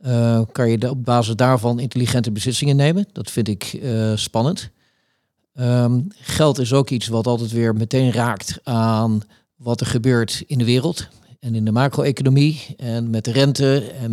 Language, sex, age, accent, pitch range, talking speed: Dutch, male, 50-69, Dutch, 115-135 Hz, 165 wpm